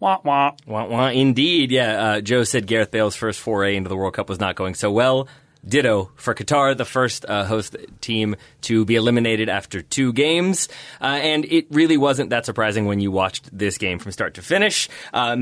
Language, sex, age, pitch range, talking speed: English, male, 30-49, 105-130 Hz, 205 wpm